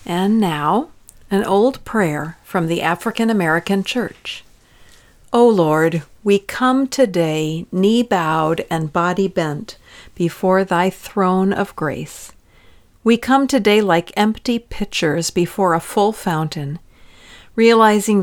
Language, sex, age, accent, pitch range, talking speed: English, female, 50-69, American, 165-210 Hz, 110 wpm